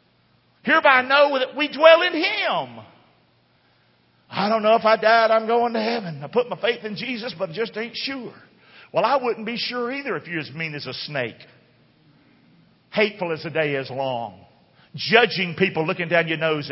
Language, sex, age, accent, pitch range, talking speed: English, male, 50-69, American, 155-225 Hz, 195 wpm